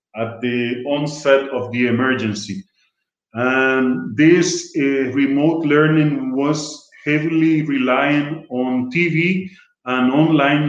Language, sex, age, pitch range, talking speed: English, male, 40-59, 140-175 Hz, 100 wpm